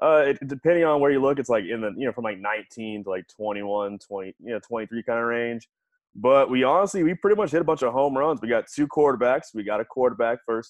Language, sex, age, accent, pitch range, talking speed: English, male, 20-39, American, 110-135 Hz, 275 wpm